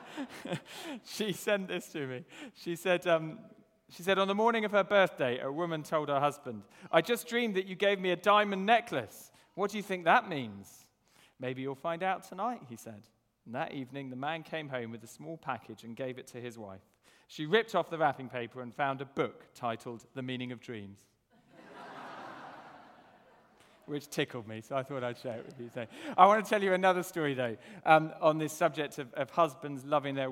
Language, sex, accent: English, male, British